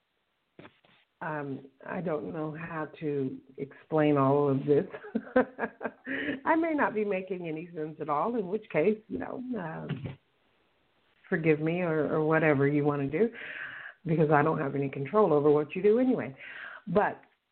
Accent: American